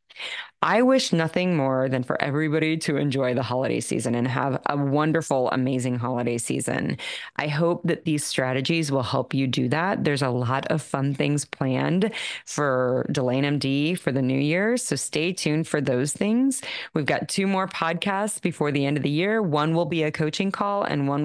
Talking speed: 190 wpm